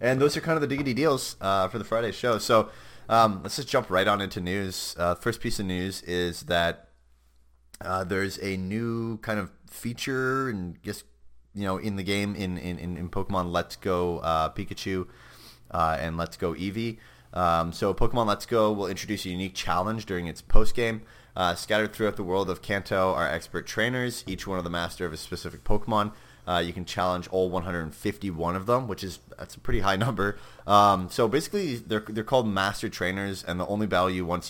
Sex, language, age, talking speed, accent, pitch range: male, English, 30-49, 210 wpm, American, 85-105 Hz